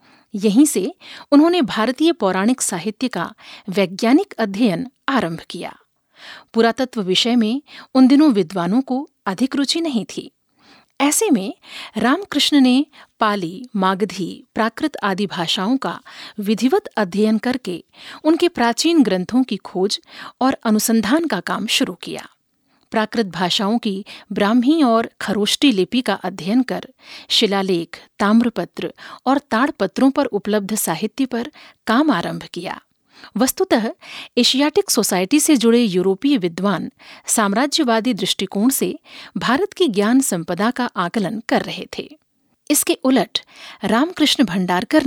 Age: 50-69